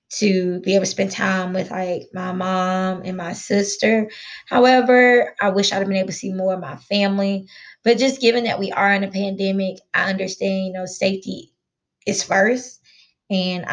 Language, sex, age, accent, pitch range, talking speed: English, female, 20-39, American, 190-245 Hz, 190 wpm